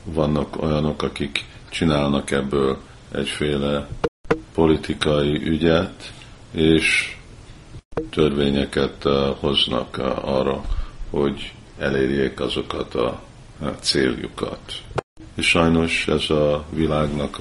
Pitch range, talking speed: 75-80 Hz, 70 wpm